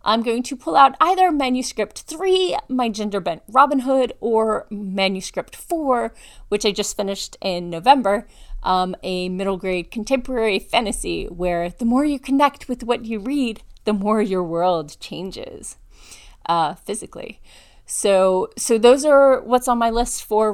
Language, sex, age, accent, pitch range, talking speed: English, female, 30-49, American, 190-260 Hz, 155 wpm